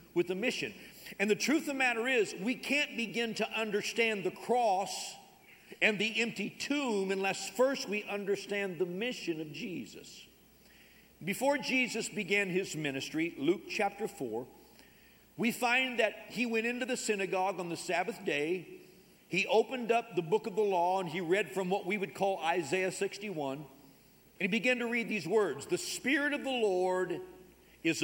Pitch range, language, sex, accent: 185-245 Hz, English, male, American